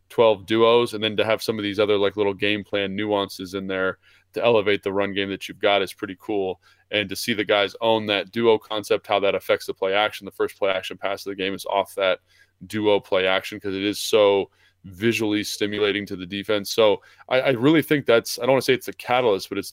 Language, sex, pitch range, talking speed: English, male, 100-110 Hz, 250 wpm